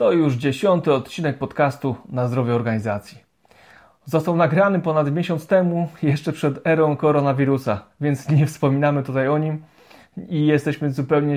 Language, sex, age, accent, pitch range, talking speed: Polish, male, 30-49, native, 135-165 Hz, 135 wpm